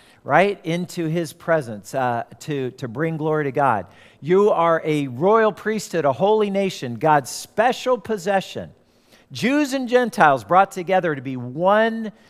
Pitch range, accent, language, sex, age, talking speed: 140-185 Hz, American, English, male, 50-69, 145 wpm